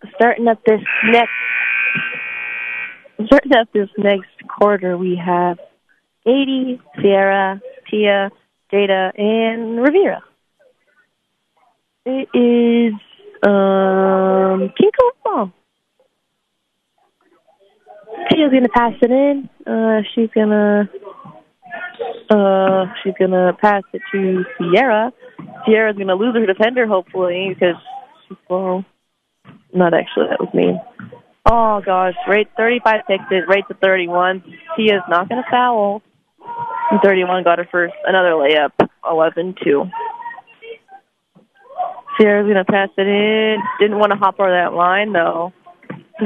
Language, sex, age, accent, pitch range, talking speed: English, female, 20-39, American, 180-235 Hz, 110 wpm